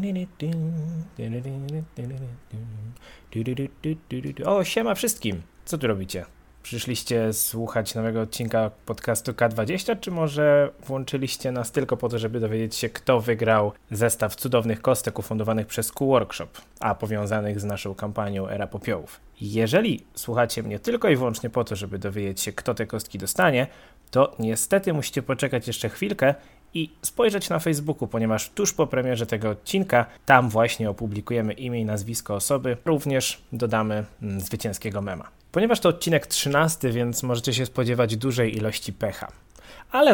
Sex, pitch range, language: male, 110-135 Hz, Polish